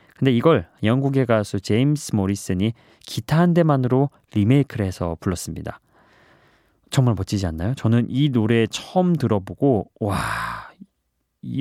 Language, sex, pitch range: Korean, male, 100-140 Hz